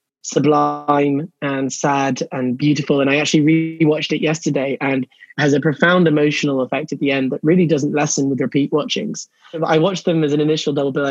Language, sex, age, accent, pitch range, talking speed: English, male, 20-39, British, 140-160 Hz, 190 wpm